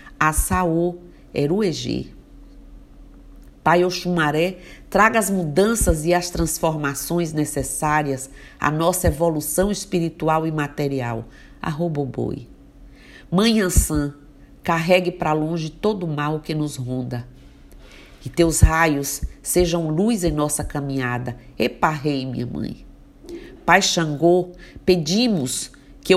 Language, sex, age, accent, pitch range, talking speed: Portuguese, female, 50-69, Brazilian, 145-180 Hz, 100 wpm